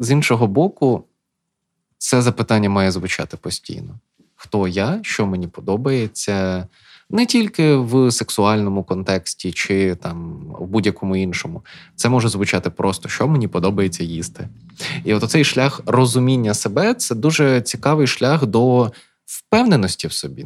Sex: male